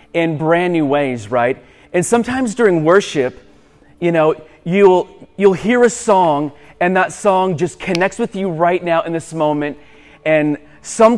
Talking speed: 160 wpm